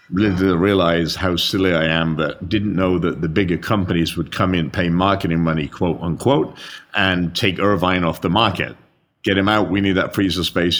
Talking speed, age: 200 wpm, 50-69